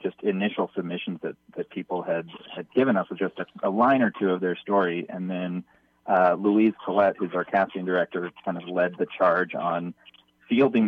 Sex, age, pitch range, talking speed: male, 20-39, 90-105 Hz, 200 wpm